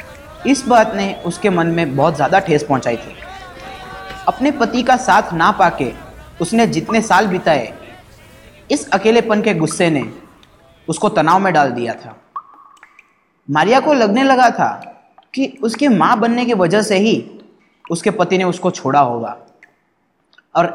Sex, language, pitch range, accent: male, Malayalam, 145-220 Hz, native